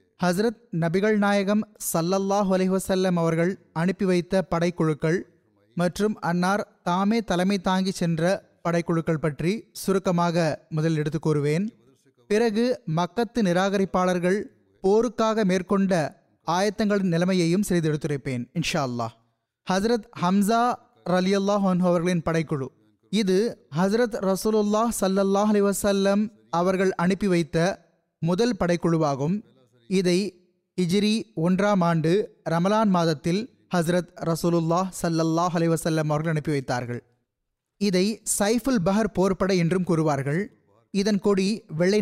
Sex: male